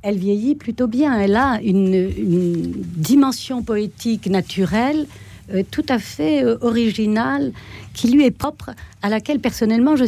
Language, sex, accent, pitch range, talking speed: French, female, French, 165-230 Hz, 150 wpm